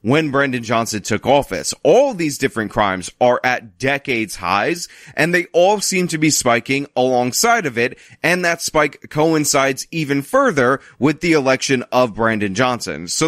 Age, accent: 30-49, American